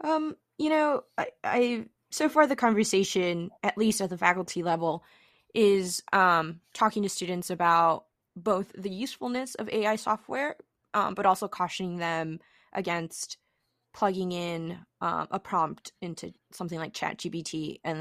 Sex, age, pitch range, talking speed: female, 20-39, 170-220 Hz, 145 wpm